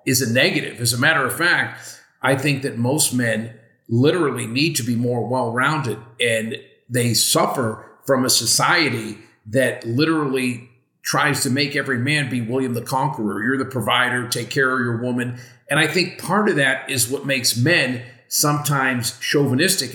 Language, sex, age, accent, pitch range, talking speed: English, male, 50-69, American, 120-150 Hz, 170 wpm